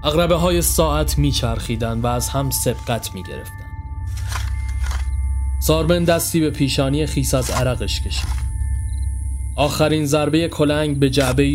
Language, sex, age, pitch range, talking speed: Persian, male, 30-49, 85-140 Hz, 120 wpm